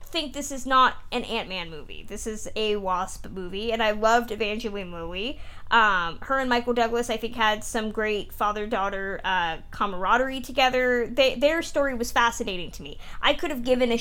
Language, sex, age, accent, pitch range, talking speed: English, female, 20-39, American, 210-255 Hz, 185 wpm